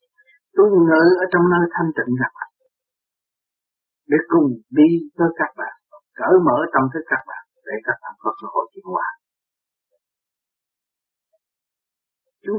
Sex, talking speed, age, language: male, 135 wpm, 50-69, Vietnamese